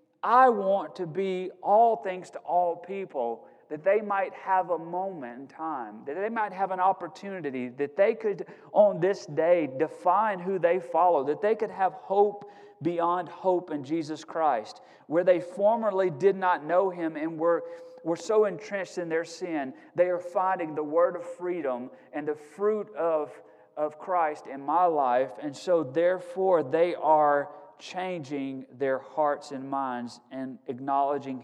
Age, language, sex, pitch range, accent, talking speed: 40-59, English, male, 170-205 Hz, American, 165 wpm